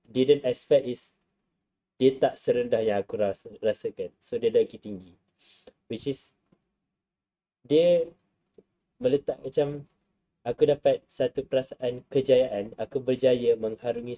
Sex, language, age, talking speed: male, Malay, 20-39, 115 wpm